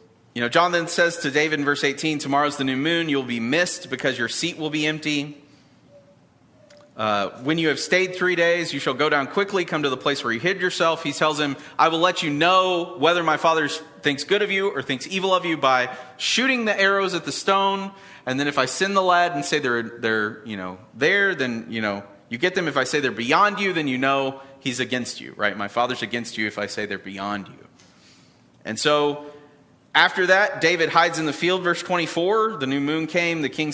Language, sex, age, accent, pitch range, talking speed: English, male, 30-49, American, 125-175 Hz, 230 wpm